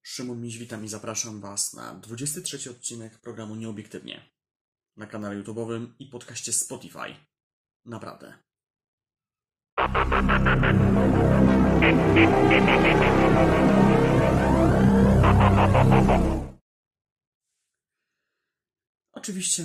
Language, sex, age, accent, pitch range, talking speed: Polish, male, 30-49, native, 100-145 Hz, 60 wpm